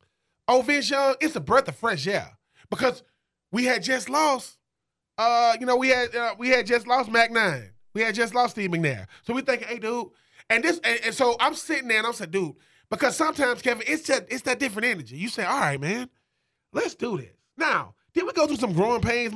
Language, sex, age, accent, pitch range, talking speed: English, male, 20-39, American, 200-280 Hz, 230 wpm